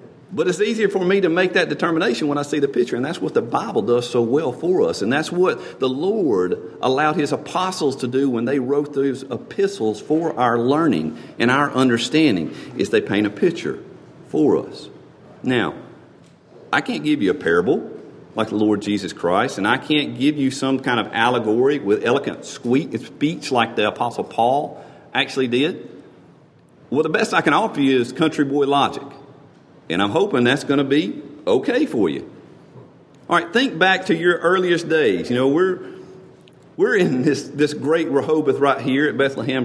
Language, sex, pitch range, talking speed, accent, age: English, male, 130-180 Hz, 190 wpm, American, 50-69